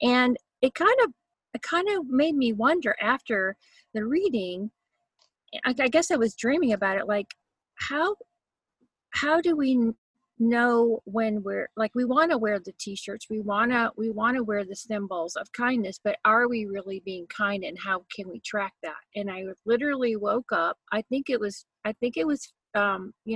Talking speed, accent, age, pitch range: 190 wpm, American, 40-59, 210-270 Hz